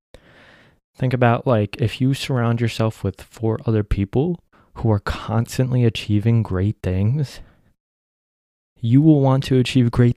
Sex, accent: male, American